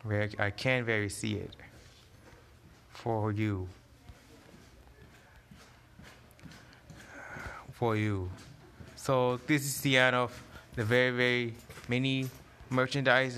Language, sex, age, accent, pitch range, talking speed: English, male, 20-39, American, 115-130 Hz, 95 wpm